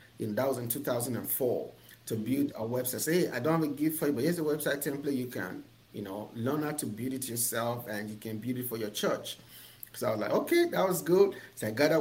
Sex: male